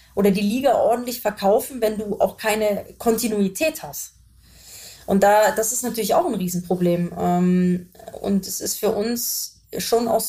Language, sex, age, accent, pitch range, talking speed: German, female, 20-39, German, 190-225 Hz, 145 wpm